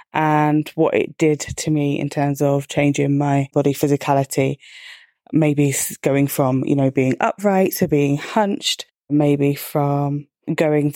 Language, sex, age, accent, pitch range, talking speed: English, female, 20-39, British, 145-165 Hz, 140 wpm